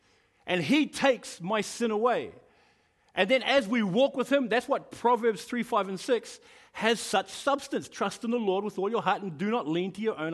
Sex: male